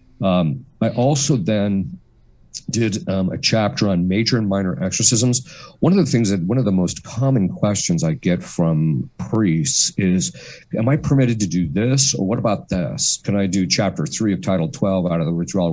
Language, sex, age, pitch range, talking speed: English, male, 50-69, 90-120 Hz, 195 wpm